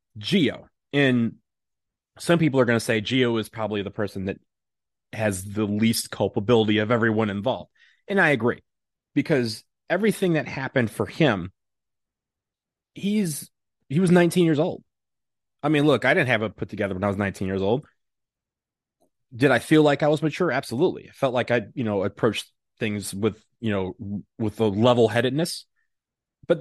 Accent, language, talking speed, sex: American, English, 170 wpm, male